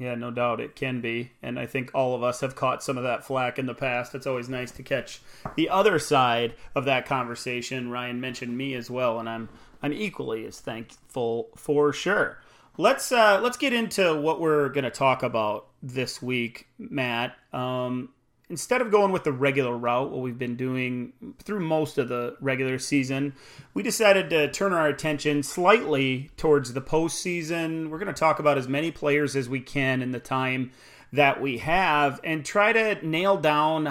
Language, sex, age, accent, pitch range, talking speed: English, male, 30-49, American, 130-155 Hz, 190 wpm